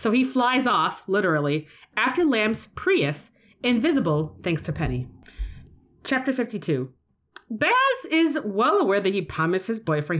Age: 30-49